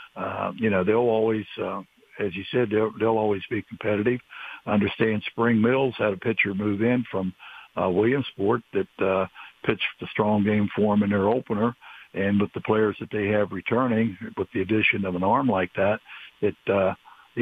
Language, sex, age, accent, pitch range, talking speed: English, male, 60-79, American, 100-115 Hz, 190 wpm